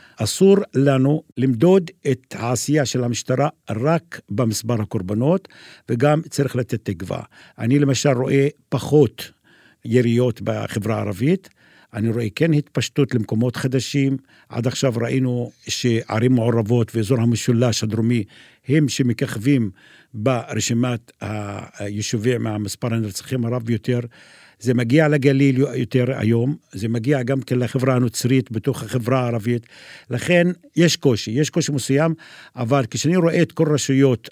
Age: 50-69